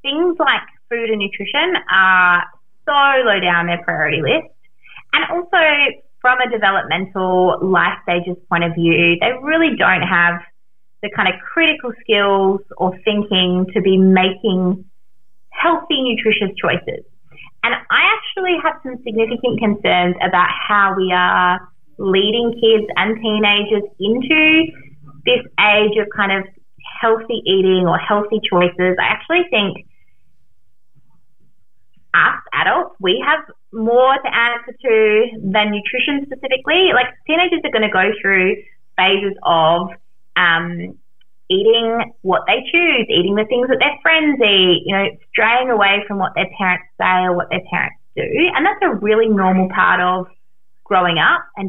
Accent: Australian